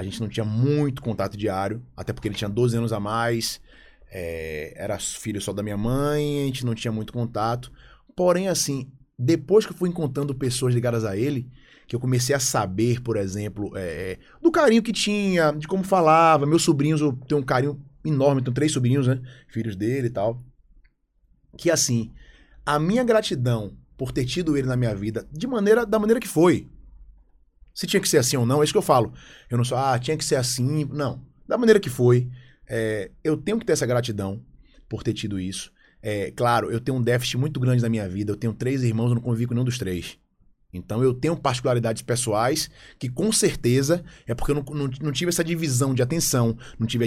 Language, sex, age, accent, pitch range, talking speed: Portuguese, male, 20-39, Brazilian, 110-150 Hz, 210 wpm